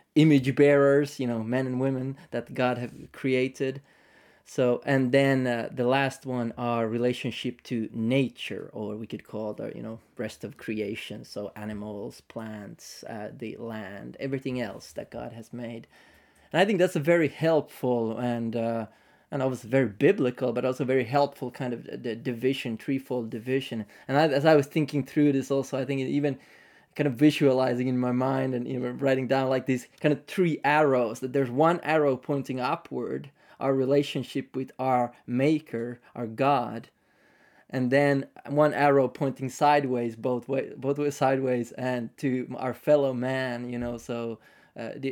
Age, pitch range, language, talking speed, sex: 20-39, 120-135 Hz, English, 175 wpm, male